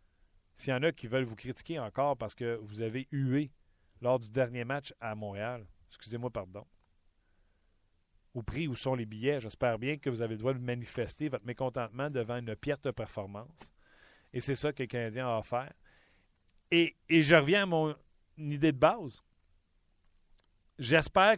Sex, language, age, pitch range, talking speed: male, French, 40-59, 110-160 Hz, 175 wpm